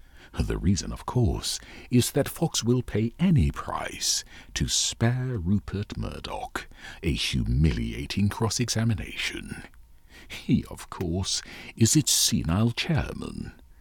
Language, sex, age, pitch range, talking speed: English, male, 60-79, 80-130 Hz, 110 wpm